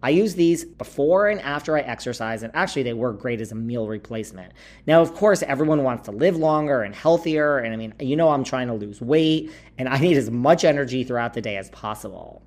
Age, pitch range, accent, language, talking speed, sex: 40-59, 120-160 Hz, American, English, 230 wpm, male